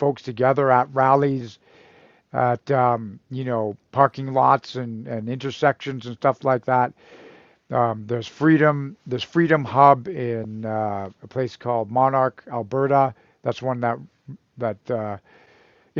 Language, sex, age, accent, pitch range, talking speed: English, male, 50-69, American, 120-140 Hz, 130 wpm